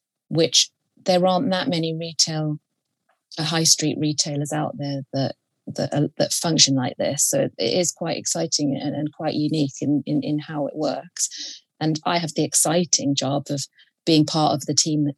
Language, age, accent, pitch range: English, 30-49, British, 145-170 Hz